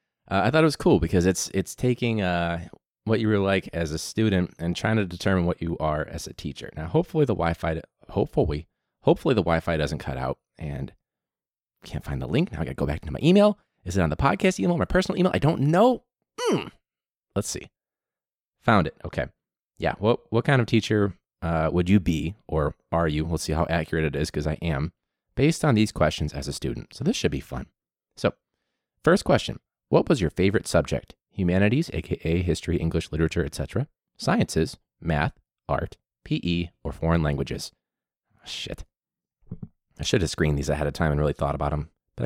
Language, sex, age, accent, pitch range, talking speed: English, male, 30-49, American, 80-115 Hz, 200 wpm